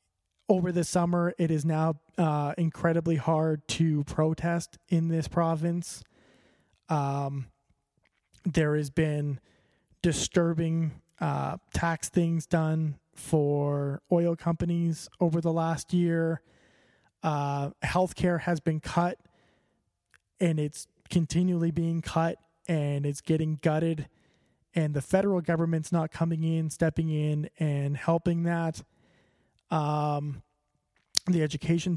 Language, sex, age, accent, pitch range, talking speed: English, male, 20-39, American, 150-175 Hz, 115 wpm